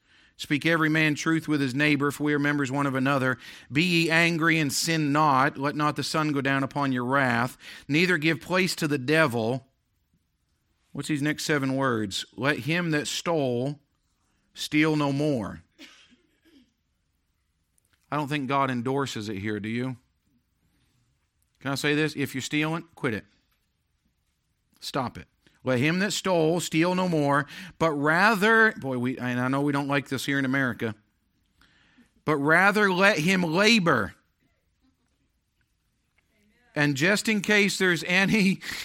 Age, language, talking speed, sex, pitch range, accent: 50-69, German, 155 wpm, male, 135-185 Hz, American